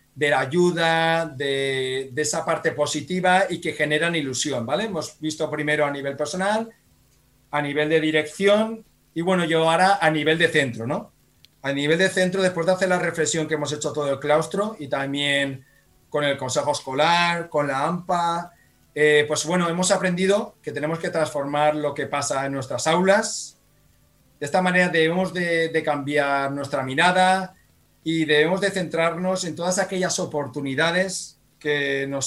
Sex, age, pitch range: male, 40-59, 145-185 Hz